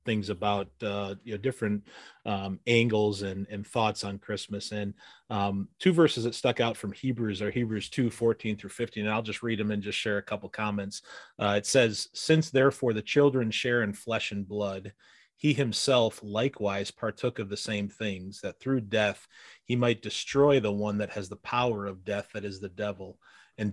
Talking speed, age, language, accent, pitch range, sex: 195 wpm, 30-49, English, American, 105-120 Hz, male